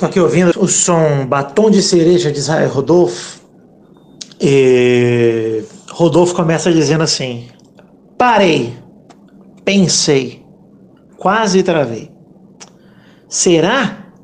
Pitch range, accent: 165-240 Hz, Brazilian